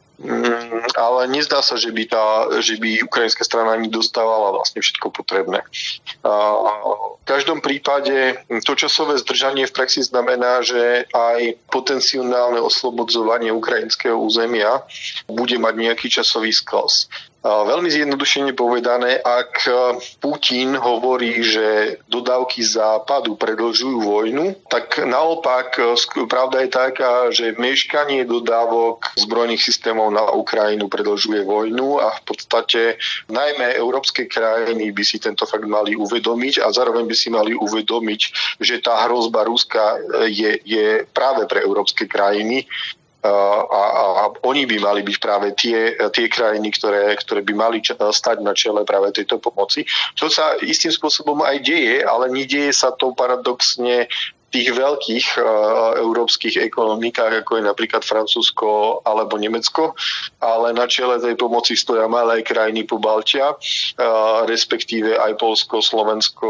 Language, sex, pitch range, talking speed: Slovak, male, 110-130 Hz, 135 wpm